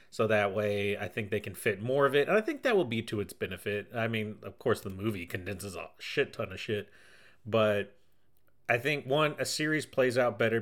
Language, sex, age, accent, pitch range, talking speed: English, male, 30-49, American, 105-130 Hz, 230 wpm